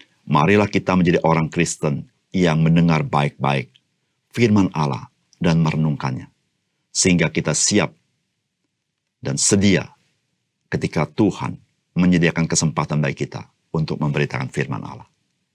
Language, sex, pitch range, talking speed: Indonesian, male, 80-100 Hz, 105 wpm